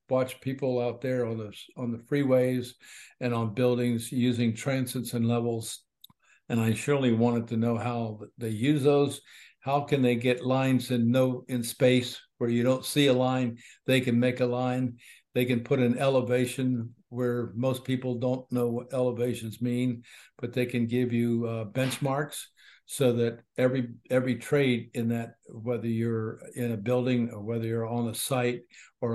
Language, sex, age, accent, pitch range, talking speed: English, male, 60-79, American, 120-130 Hz, 175 wpm